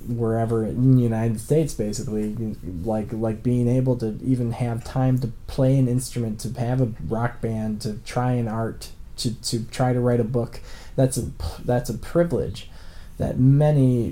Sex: male